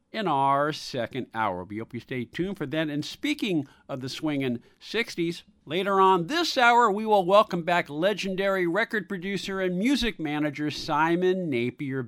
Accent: American